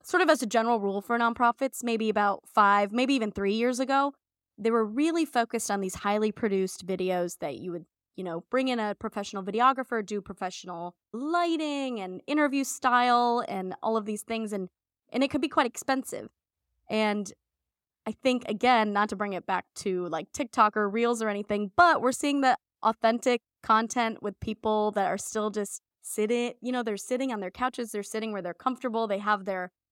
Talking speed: 195 wpm